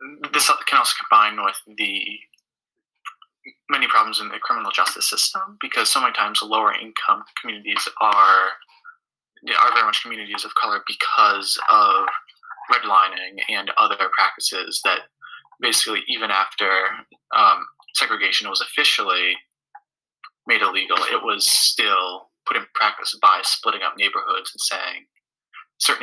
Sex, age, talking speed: male, 20-39, 130 wpm